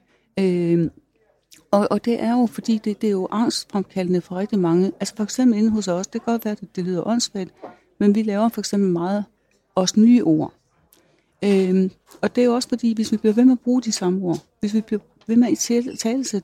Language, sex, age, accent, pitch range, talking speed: Danish, female, 60-79, native, 190-225 Hz, 225 wpm